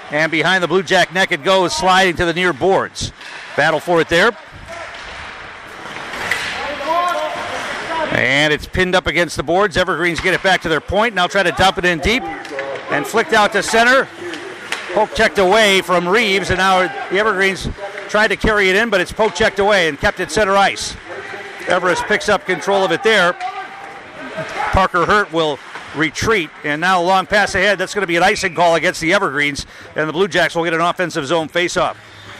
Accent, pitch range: American, 165-210 Hz